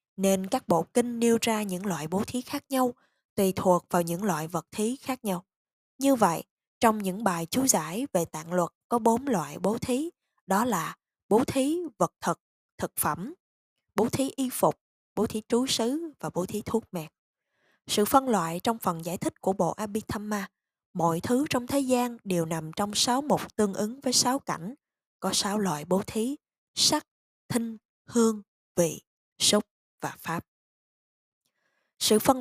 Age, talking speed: 20-39, 180 wpm